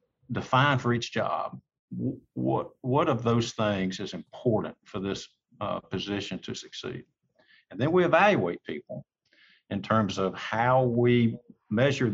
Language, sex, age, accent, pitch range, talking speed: English, male, 50-69, American, 100-125 Hz, 140 wpm